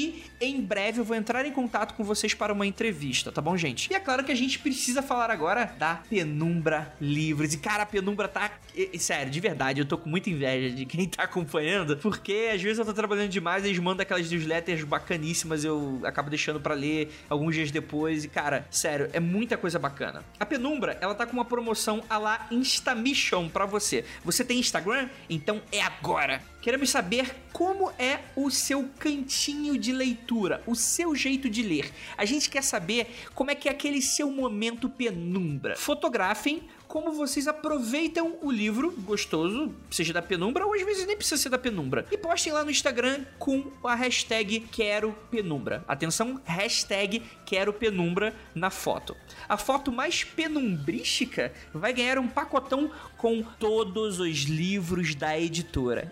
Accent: Brazilian